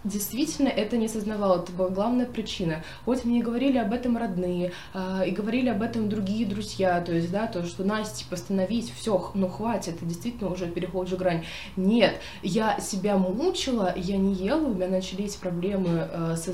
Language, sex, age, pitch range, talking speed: Russian, female, 20-39, 185-225 Hz, 180 wpm